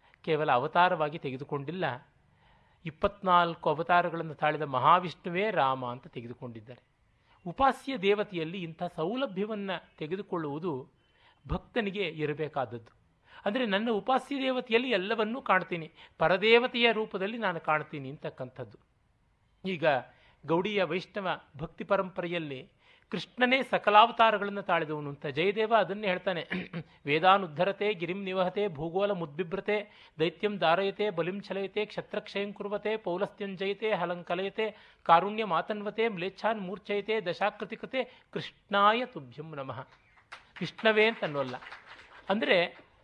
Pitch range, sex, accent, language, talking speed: 155-210 Hz, male, native, Kannada, 90 wpm